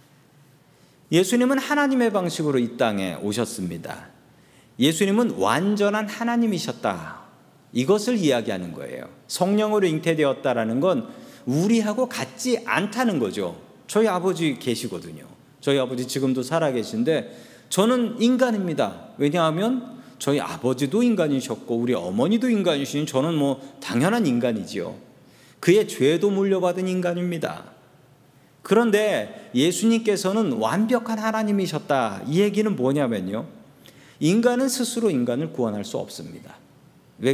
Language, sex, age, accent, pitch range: Korean, male, 40-59, native, 145-230 Hz